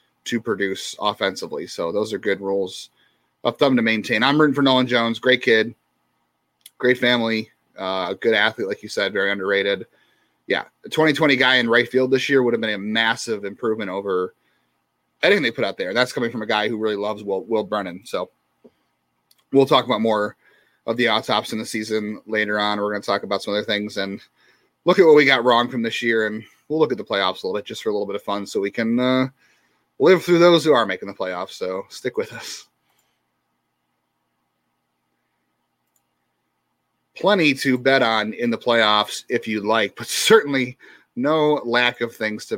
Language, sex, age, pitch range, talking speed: English, male, 30-49, 100-125 Hz, 200 wpm